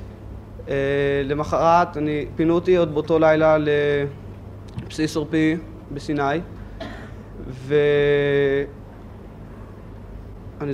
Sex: male